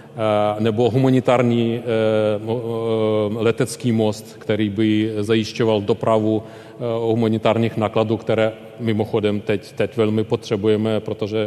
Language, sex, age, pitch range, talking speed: Czech, male, 40-59, 110-115 Hz, 90 wpm